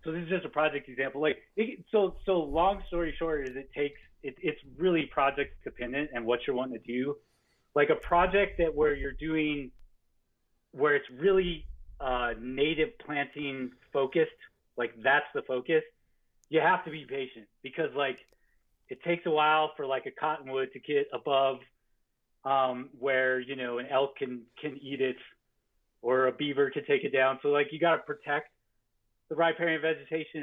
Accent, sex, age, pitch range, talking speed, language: American, male, 30-49, 130-160 Hz, 175 wpm, English